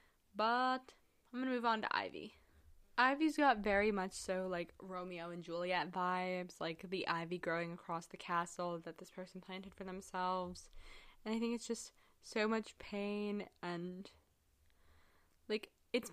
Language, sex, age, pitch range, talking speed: English, female, 10-29, 175-215 Hz, 155 wpm